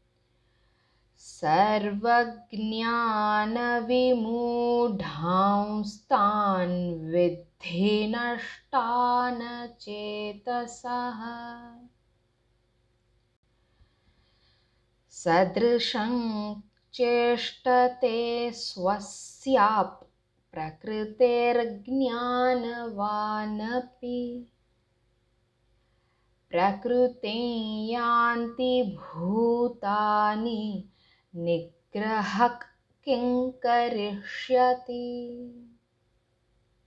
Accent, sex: native, female